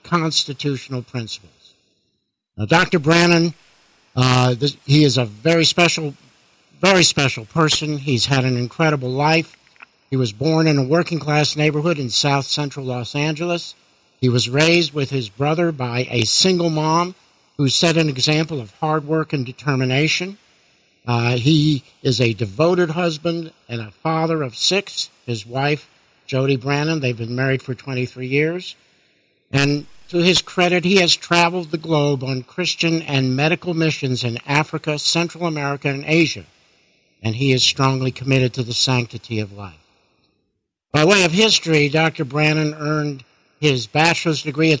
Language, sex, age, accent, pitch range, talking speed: English, male, 60-79, American, 125-160 Hz, 155 wpm